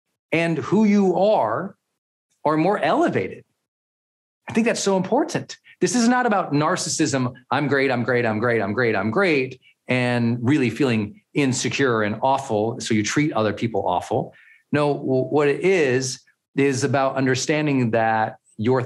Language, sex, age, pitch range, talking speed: English, male, 40-59, 120-185 Hz, 155 wpm